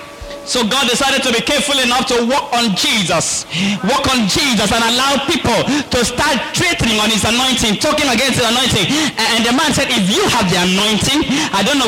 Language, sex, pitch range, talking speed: English, male, 210-275 Hz, 195 wpm